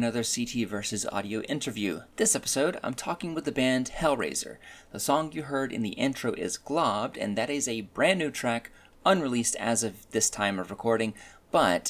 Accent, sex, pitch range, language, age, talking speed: American, male, 95-125 Hz, English, 30-49, 185 wpm